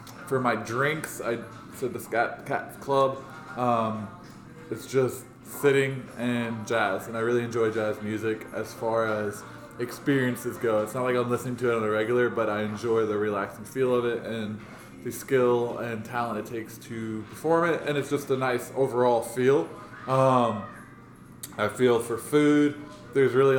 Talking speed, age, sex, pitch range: 175 wpm, 20-39, male, 110-125 Hz